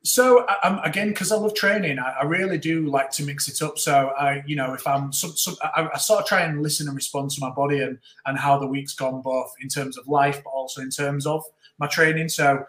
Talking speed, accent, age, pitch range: 250 wpm, British, 30-49, 135-150 Hz